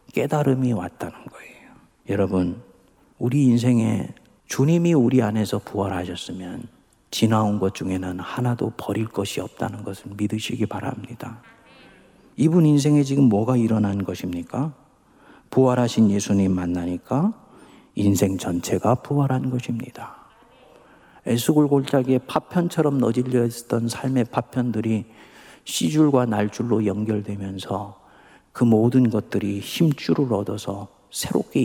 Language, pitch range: Korean, 100-140 Hz